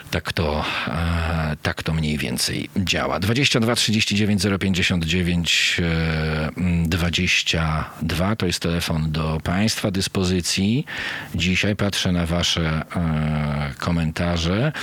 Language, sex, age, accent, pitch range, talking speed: Polish, male, 40-59, native, 85-100 Hz, 85 wpm